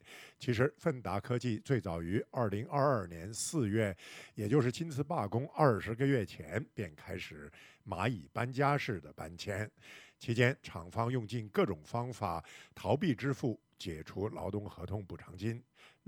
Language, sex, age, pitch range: Chinese, male, 50-69, 100-130 Hz